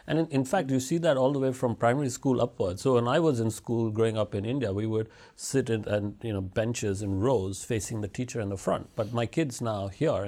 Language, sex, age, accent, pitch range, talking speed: English, male, 50-69, Indian, 100-125 Hz, 265 wpm